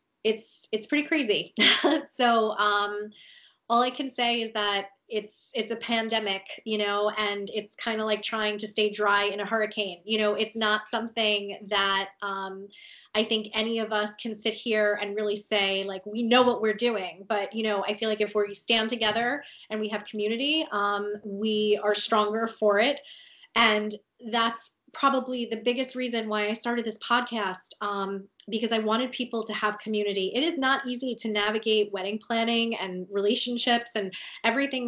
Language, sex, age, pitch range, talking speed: English, female, 20-39, 205-230 Hz, 180 wpm